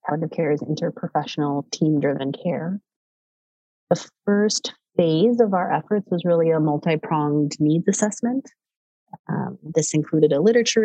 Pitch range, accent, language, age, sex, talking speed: 155-190 Hz, American, English, 30-49, female, 125 wpm